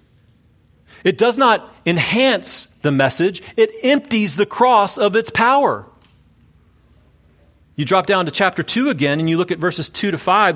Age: 40-59